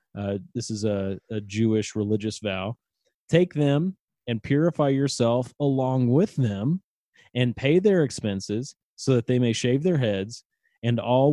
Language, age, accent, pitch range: English, 30-49, American, 105-130 Hz